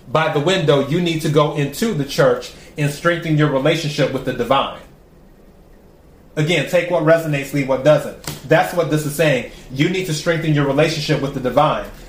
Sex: male